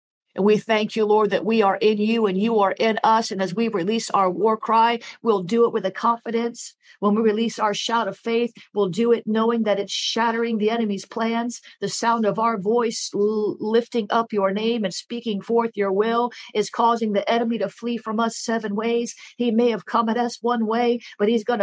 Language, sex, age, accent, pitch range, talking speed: English, female, 50-69, American, 205-235 Hz, 220 wpm